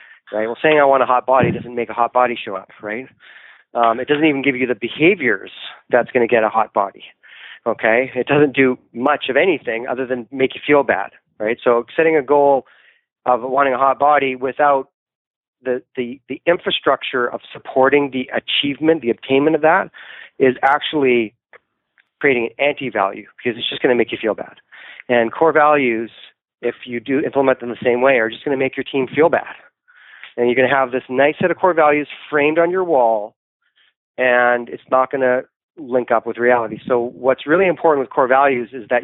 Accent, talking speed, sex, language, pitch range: American, 205 wpm, male, English, 120-140 Hz